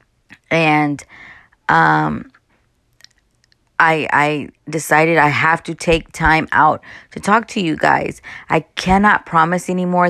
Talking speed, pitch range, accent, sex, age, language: 120 wpm, 150-165 Hz, American, female, 20-39, English